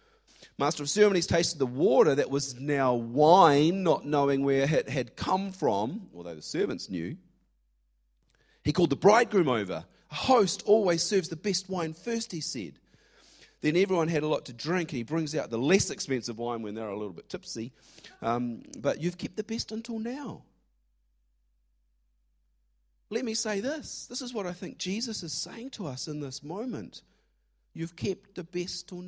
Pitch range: 145-225 Hz